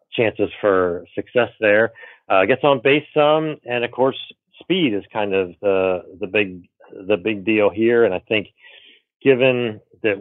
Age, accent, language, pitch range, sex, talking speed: 40-59, American, English, 95-115 Hz, male, 165 wpm